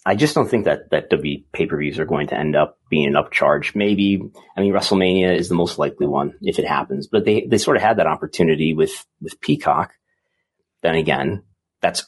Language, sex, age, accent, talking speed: English, male, 30-49, American, 220 wpm